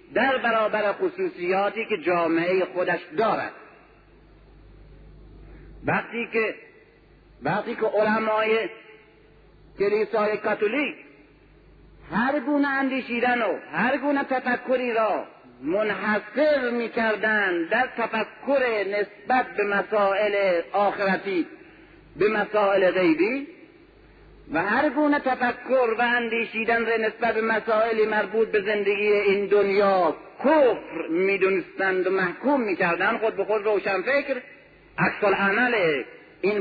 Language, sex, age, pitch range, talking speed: Persian, male, 50-69, 200-285 Hz, 100 wpm